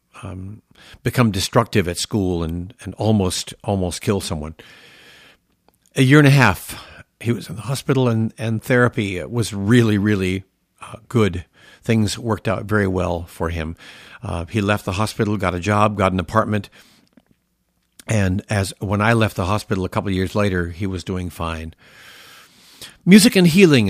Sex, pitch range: male, 95-120 Hz